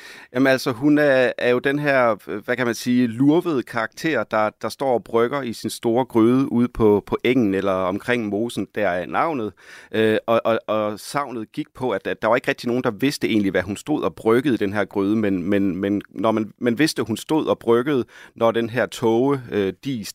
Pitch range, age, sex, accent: 100-125 Hz, 30-49, male, native